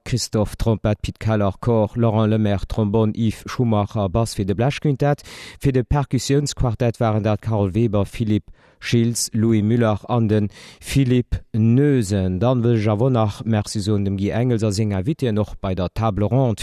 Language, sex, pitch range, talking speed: German, male, 100-125 Hz, 160 wpm